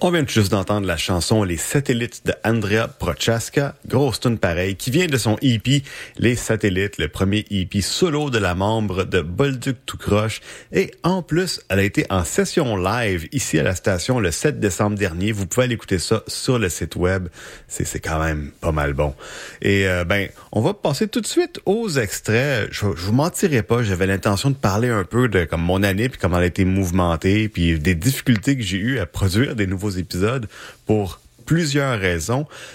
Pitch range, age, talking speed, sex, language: 95-125 Hz, 30-49, 200 wpm, male, French